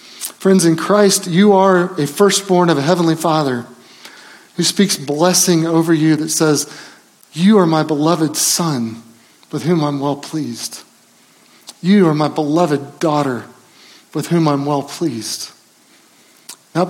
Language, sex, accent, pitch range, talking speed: English, male, American, 145-175 Hz, 140 wpm